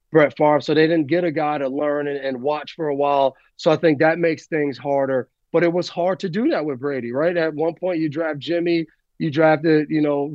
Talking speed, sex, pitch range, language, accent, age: 250 wpm, male, 150-170 Hz, English, American, 30-49